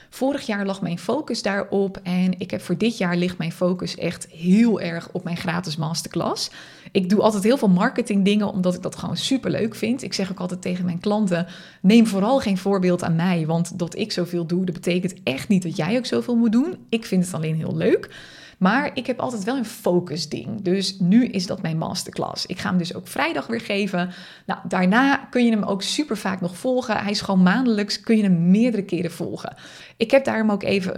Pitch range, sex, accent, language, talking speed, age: 180-220 Hz, female, Dutch, Dutch, 225 wpm, 20-39